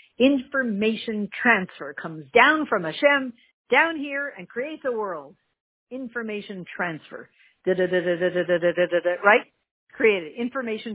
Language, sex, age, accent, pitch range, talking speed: English, female, 50-69, American, 170-235 Hz, 95 wpm